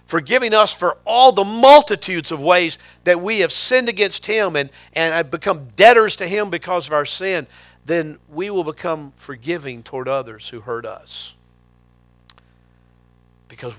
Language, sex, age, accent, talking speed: English, male, 50-69, American, 155 wpm